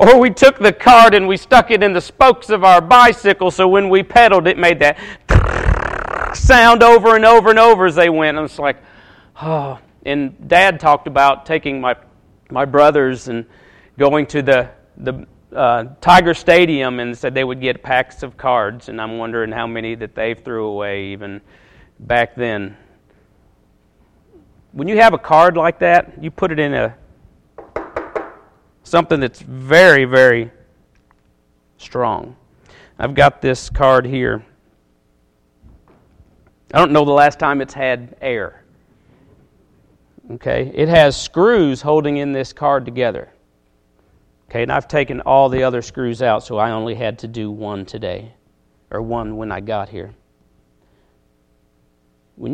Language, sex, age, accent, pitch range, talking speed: English, male, 40-59, American, 110-160 Hz, 155 wpm